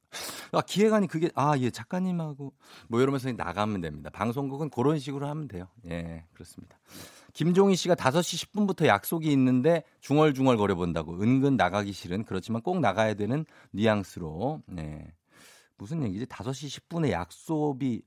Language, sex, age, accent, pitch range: Korean, male, 50-69, native, 95-155 Hz